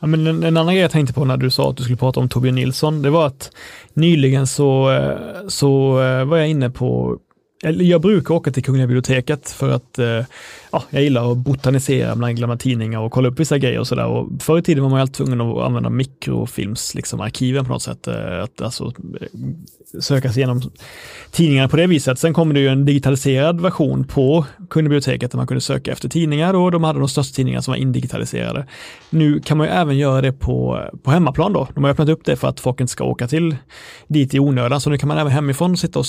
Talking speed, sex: 230 wpm, male